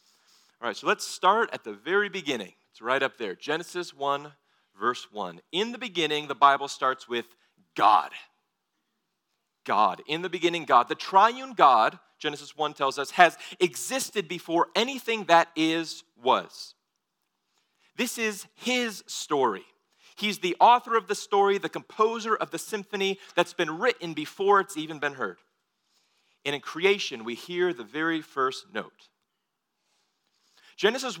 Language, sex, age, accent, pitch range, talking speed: English, male, 40-59, American, 155-205 Hz, 150 wpm